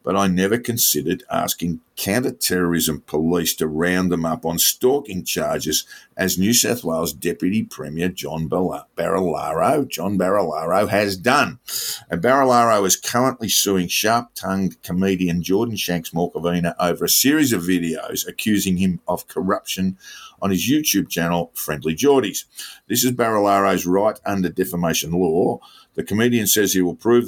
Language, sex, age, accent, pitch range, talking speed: English, male, 50-69, Australian, 85-105 Hz, 145 wpm